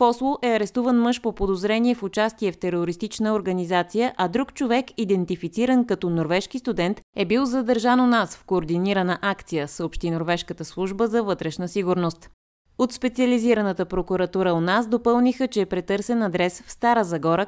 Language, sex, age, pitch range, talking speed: Bulgarian, female, 20-39, 175-230 Hz, 155 wpm